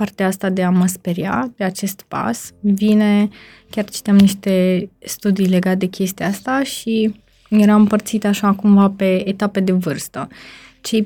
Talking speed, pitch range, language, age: 150 wpm, 180-210 Hz, Romanian, 20-39